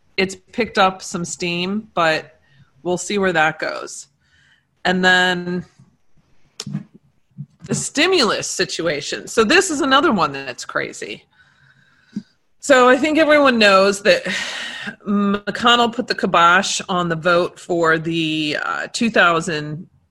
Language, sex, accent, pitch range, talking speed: English, female, American, 160-200 Hz, 120 wpm